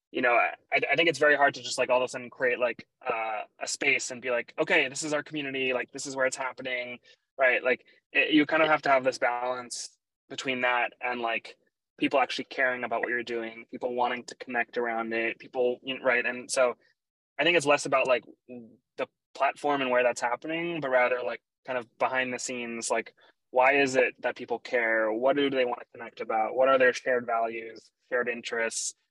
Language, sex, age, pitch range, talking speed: English, male, 20-39, 120-135 Hz, 220 wpm